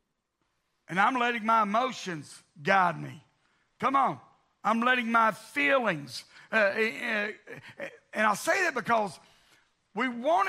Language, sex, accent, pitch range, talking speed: English, male, American, 165-210 Hz, 120 wpm